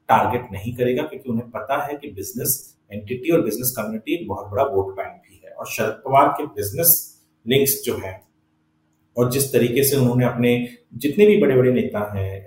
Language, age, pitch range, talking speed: Hindi, 30-49, 110-160 Hz, 55 wpm